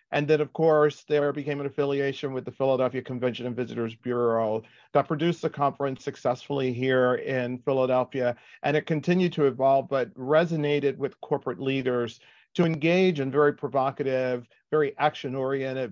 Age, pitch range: 40-59, 125-145 Hz